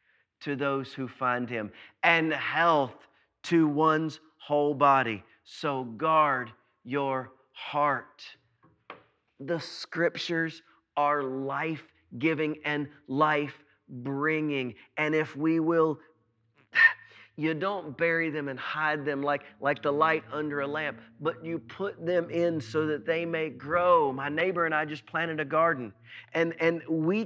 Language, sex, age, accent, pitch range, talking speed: English, male, 30-49, American, 145-175 Hz, 130 wpm